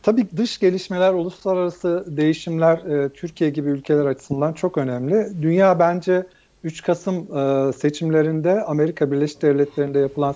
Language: Turkish